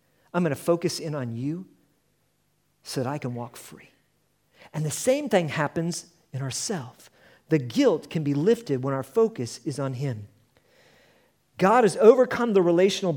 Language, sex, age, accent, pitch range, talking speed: English, male, 40-59, American, 155-205 Hz, 160 wpm